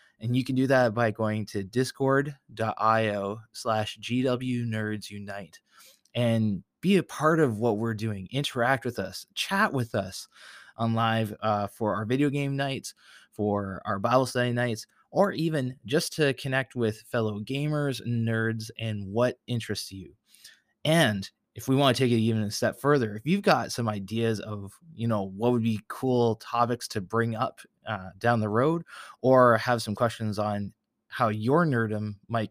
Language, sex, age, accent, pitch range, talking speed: English, male, 20-39, American, 110-130 Hz, 170 wpm